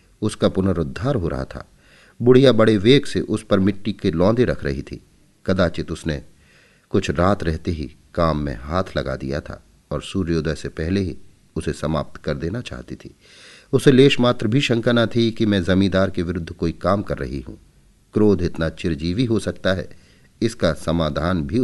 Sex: male